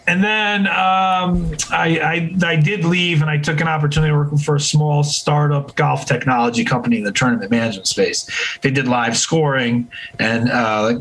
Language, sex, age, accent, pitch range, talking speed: English, male, 30-49, American, 120-150 Hz, 180 wpm